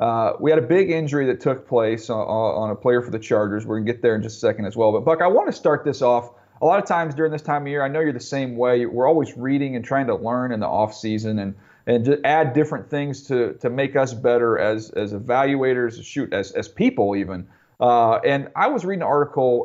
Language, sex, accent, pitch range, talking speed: English, male, American, 110-140 Hz, 265 wpm